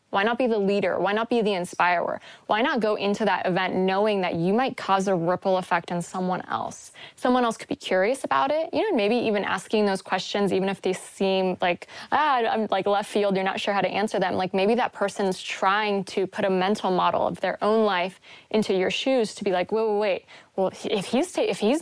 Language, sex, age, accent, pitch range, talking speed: English, female, 20-39, American, 185-215 Hz, 235 wpm